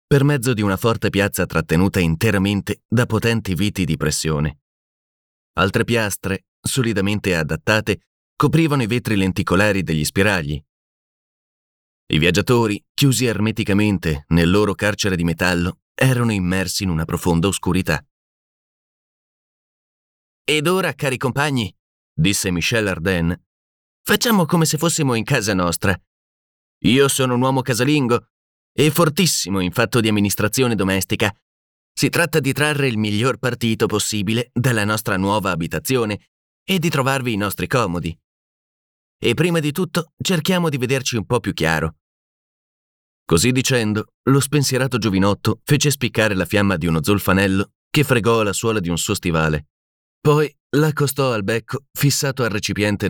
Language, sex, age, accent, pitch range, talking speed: Italian, male, 30-49, native, 90-130 Hz, 135 wpm